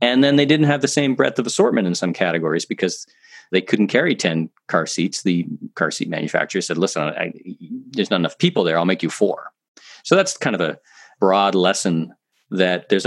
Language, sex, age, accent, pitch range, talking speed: English, male, 40-59, American, 85-120 Hz, 200 wpm